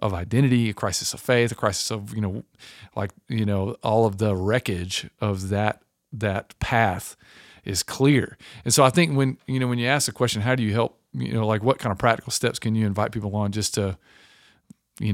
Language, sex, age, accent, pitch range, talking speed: English, male, 40-59, American, 105-125 Hz, 220 wpm